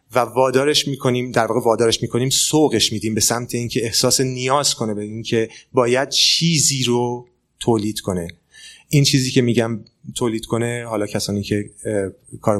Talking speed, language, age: 160 wpm, Persian, 30-49